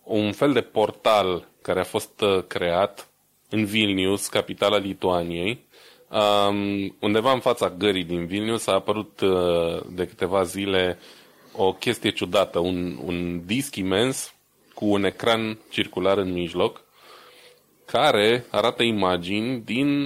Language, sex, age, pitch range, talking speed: Romanian, male, 20-39, 95-115 Hz, 120 wpm